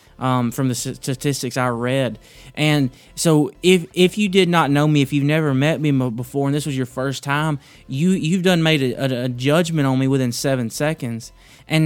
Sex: male